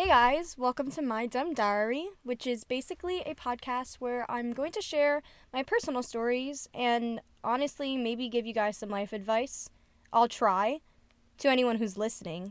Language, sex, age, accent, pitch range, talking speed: English, female, 10-29, American, 210-260 Hz, 170 wpm